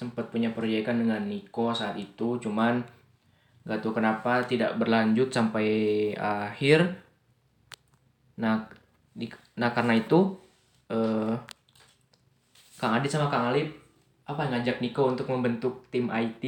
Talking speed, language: 120 wpm, Indonesian